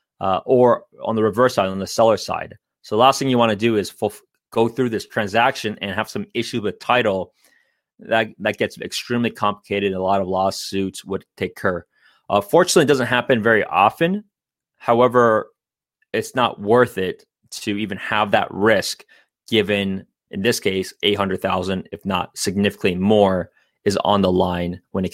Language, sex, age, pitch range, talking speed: English, male, 20-39, 100-130 Hz, 175 wpm